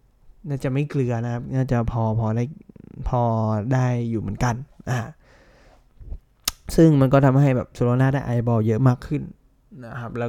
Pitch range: 115-135 Hz